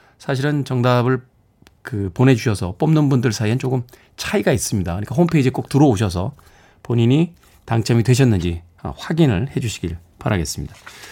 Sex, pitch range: male, 115-175 Hz